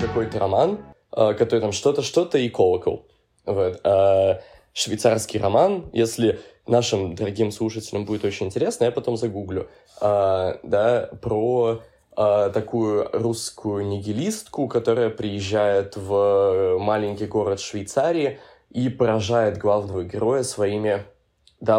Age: 20-39